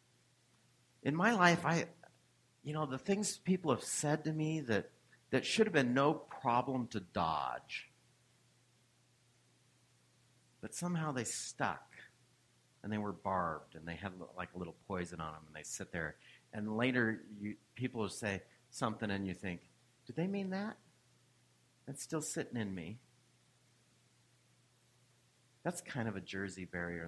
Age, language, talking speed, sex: 50-69, English, 150 wpm, male